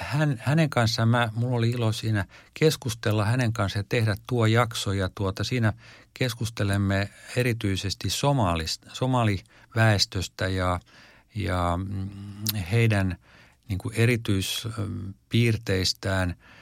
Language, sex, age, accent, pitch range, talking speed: Finnish, male, 50-69, native, 95-115 Hz, 75 wpm